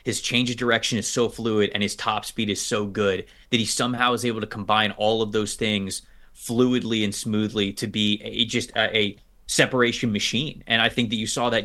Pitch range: 105-125 Hz